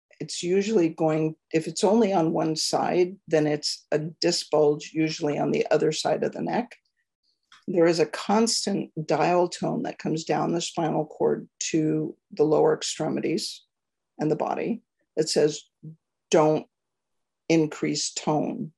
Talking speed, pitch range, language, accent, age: 145 wpm, 155-180 Hz, English, American, 50-69